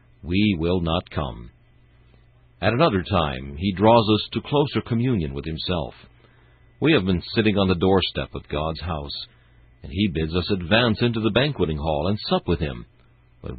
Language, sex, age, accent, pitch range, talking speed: English, male, 60-79, American, 75-110 Hz, 170 wpm